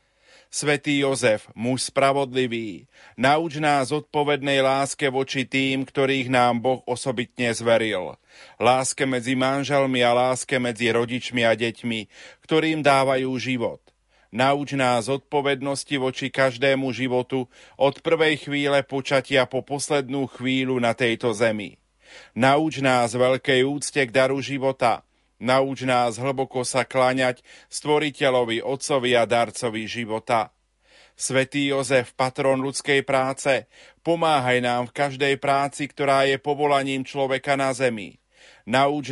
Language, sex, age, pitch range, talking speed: Slovak, male, 40-59, 125-140 Hz, 120 wpm